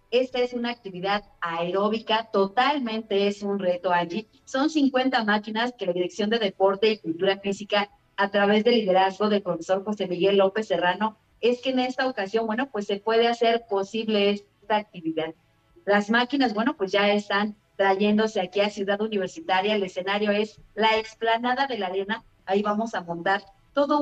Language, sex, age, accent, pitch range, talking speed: Spanish, female, 40-59, Mexican, 195-235 Hz, 170 wpm